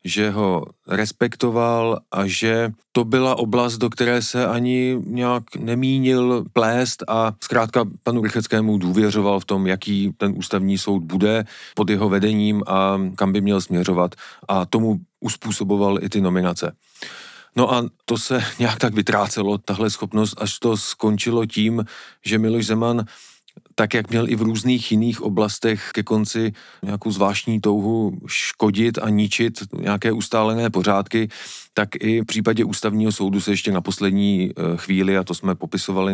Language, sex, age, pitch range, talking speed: Czech, male, 40-59, 95-115 Hz, 150 wpm